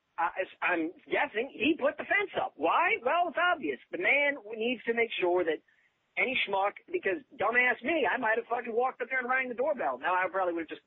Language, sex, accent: English, male, American